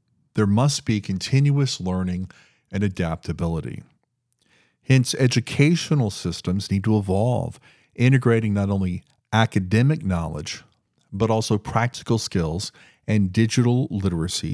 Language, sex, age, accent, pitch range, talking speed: English, male, 50-69, American, 95-130 Hz, 105 wpm